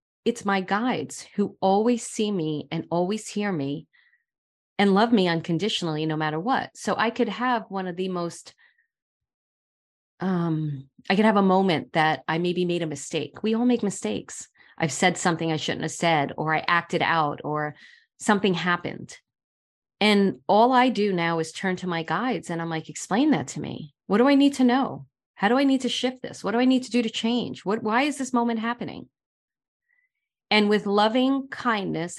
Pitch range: 165-220 Hz